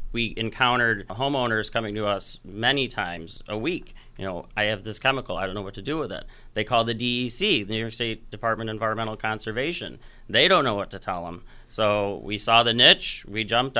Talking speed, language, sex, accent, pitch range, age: 215 wpm, English, male, American, 100-115 Hz, 30-49